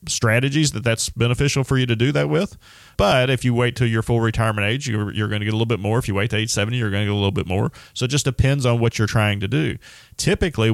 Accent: American